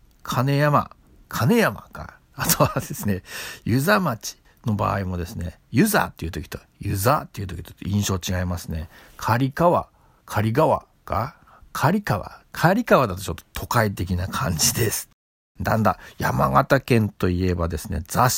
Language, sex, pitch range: Japanese, male, 100-150 Hz